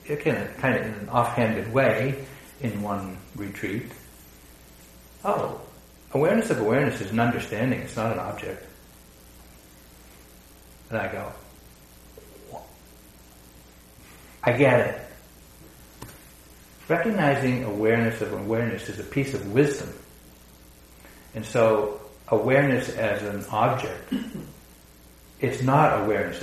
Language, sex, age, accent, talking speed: English, male, 60-79, American, 100 wpm